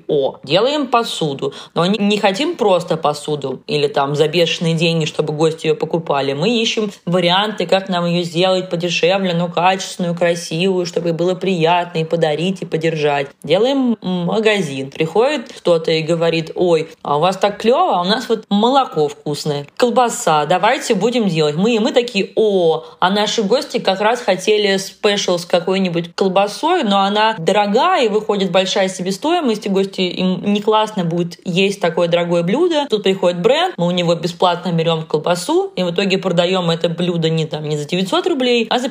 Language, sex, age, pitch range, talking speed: Russian, female, 20-39, 170-215 Hz, 170 wpm